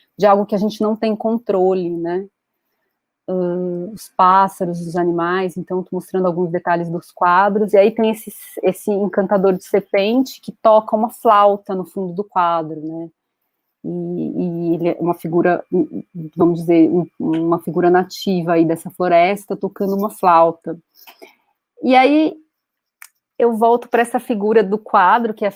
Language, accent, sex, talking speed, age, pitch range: Portuguese, Brazilian, female, 160 wpm, 30-49, 185-220 Hz